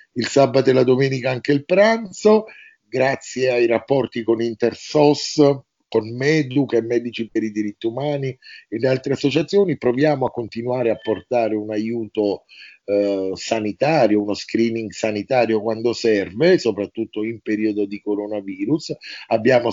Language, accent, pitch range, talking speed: Italian, native, 105-130 Hz, 135 wpm